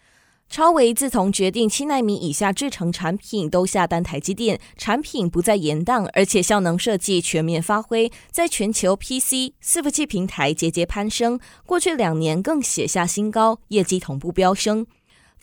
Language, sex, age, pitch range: Chinese, female, 20-39, 175-245 Hz